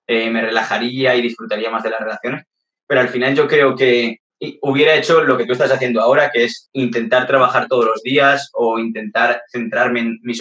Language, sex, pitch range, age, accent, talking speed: Spanish, male, 115-135 Hz, 20-39, Spanish, 200 wpm